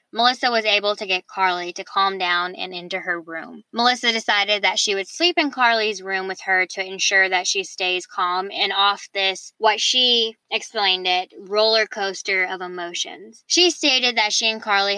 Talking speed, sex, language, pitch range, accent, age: 190 wpm, female, English, 190-245 Hz, American, 10-29